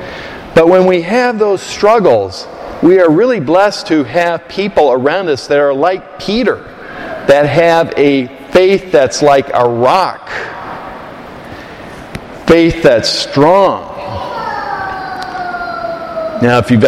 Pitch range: 125-170 Hz